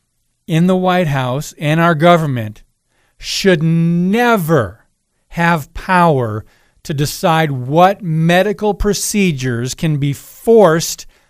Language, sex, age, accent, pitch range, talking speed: English, male, 50-69, American, 150-195 Hz, 100 wpm